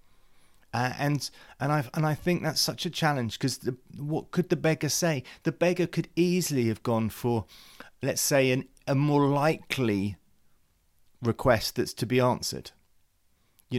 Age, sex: 30-49, male